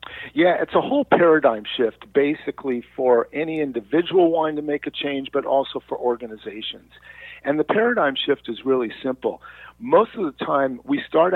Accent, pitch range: American, 125-180 Hz